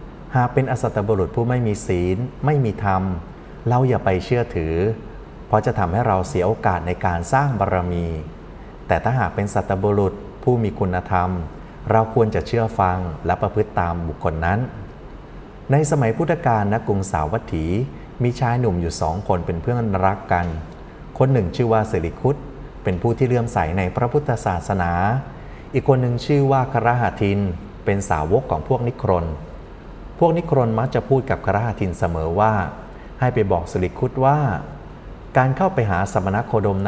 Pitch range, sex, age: 90-120 Hz, male, 30-49